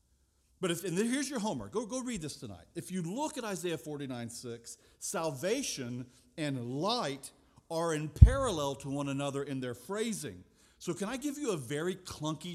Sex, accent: male, American